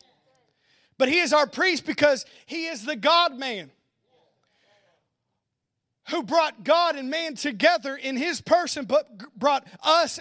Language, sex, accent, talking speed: English, male, American, 130 wpm